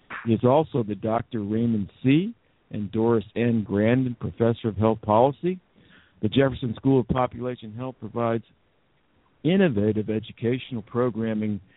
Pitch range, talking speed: 105-120 Hz, 125 wpm